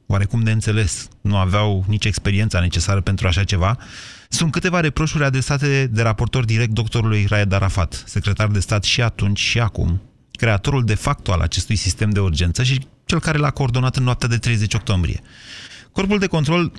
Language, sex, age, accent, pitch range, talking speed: Romanian, male, 30-49, native, 95-120 Hz, 175 wpm